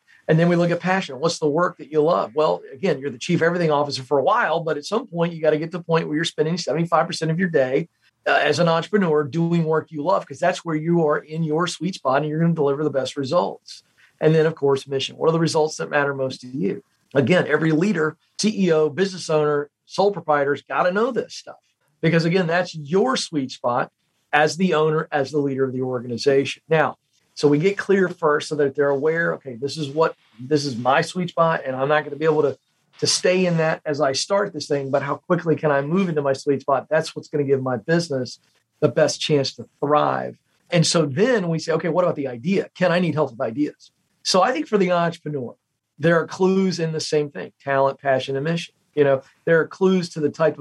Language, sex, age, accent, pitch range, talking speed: English, male, 40-59, American, 145-170 Hz, 245 wpm